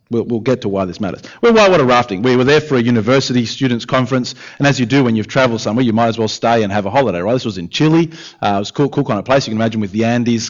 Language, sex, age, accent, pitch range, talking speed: English, male, 30-49, Australian, 110-150 Hz, 320 wpm